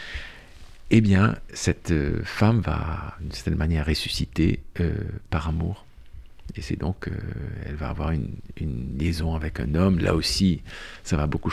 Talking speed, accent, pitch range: 155 wpm, French, 80-100 Hz